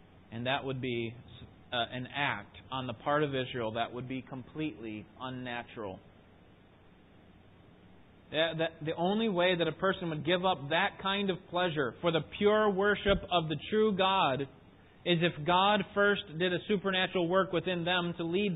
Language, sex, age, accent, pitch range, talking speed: English, male, 30-49, American, 115-180 Hz, 160 wpm